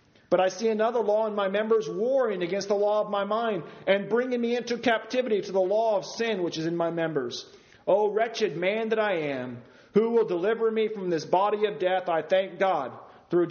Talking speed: 220 wpm